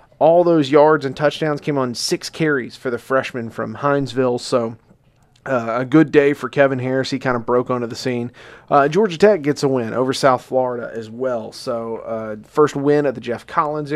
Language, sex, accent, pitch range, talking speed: English, male, American, 120-145 Hz, 205 wpm